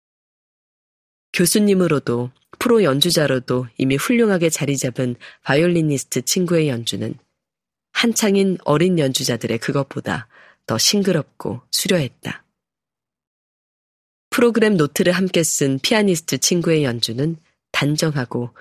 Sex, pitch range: female, 130-170 Hz